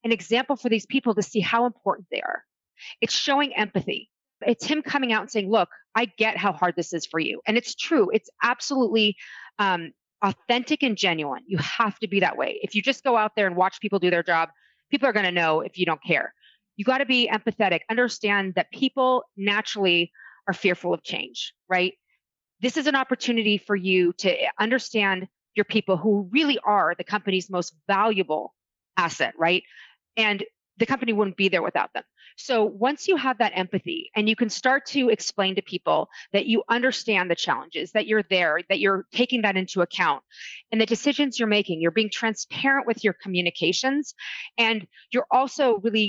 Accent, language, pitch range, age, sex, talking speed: American, English, 185-240 Hz, 30-49, female, 195 wpm